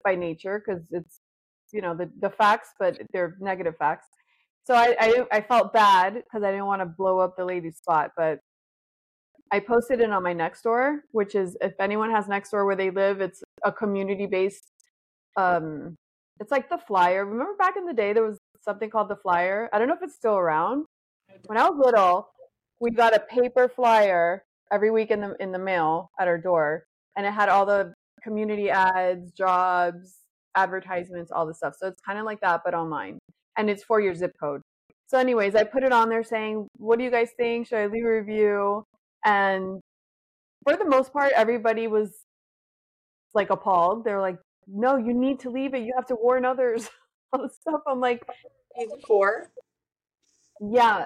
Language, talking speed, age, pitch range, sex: English, 195 wpm, 30-49, 190-240 Hz, female